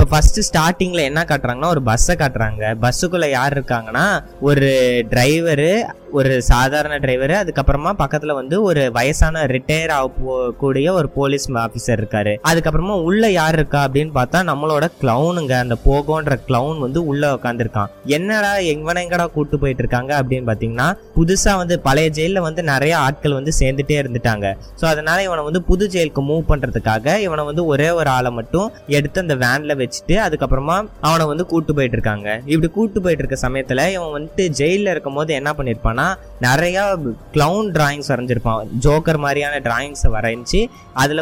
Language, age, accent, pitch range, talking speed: Tamil, 20-39, native, 130-170 Hz, 80 wpm